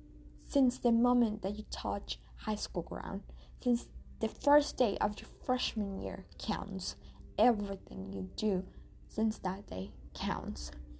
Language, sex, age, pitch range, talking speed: English, female, 20-39, 185-235 Hz, 135 wpm